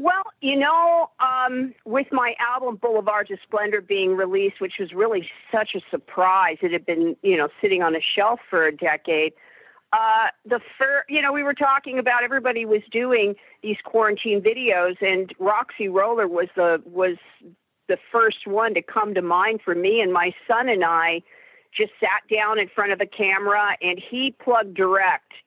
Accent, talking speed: American, 180 wpm